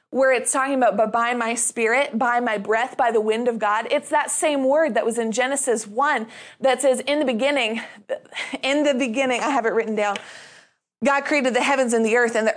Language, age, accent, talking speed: English, 20-39, American, 225 wpm